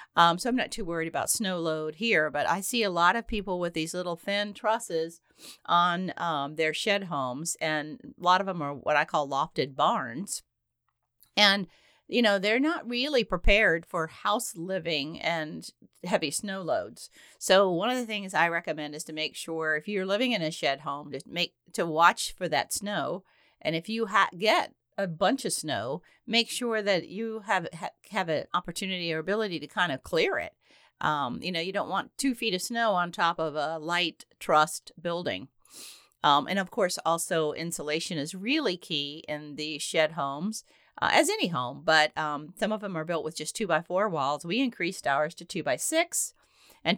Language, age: English, 40-59